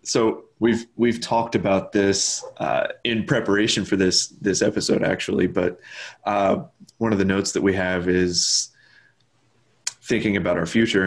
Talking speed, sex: 150 wpm, male